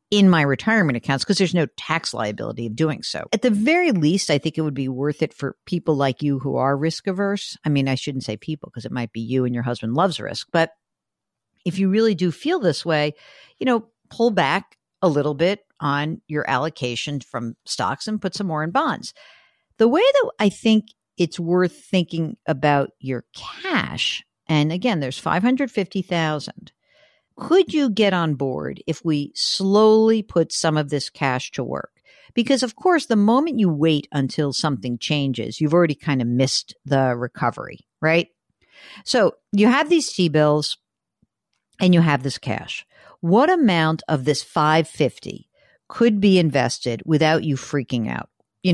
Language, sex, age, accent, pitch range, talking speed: English, female, 50-69, American, 140-200 Hz, 180 wpm